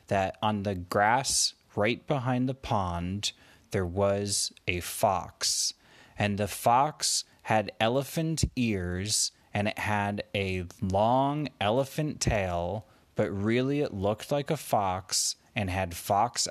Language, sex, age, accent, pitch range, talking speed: English, male, 30-49, American, 95-115 Hz, 125 wpm